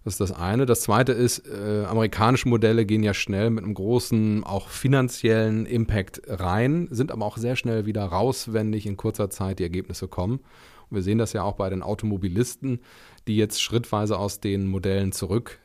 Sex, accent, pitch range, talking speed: male, German, 105-125 Hz, 195 wpm